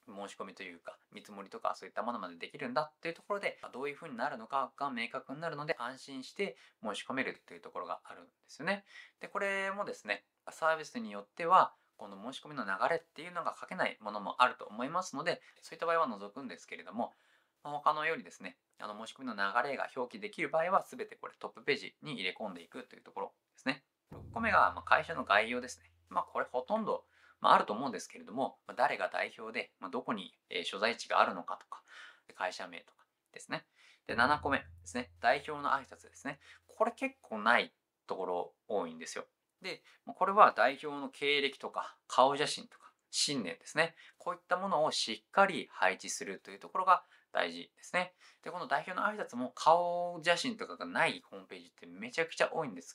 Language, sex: Japanese, male